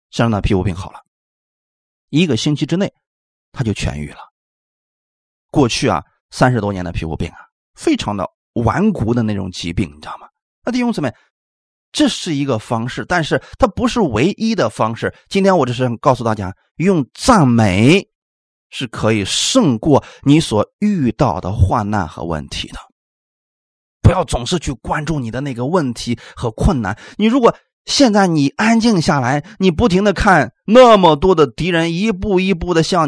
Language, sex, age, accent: Chinese, male, 30-49, native